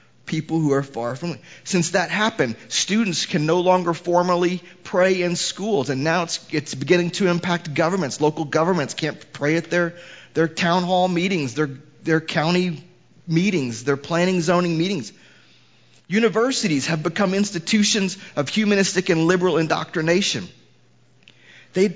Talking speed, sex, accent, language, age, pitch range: 140 wpm, male, American, English, 30-49, 145-180 Hz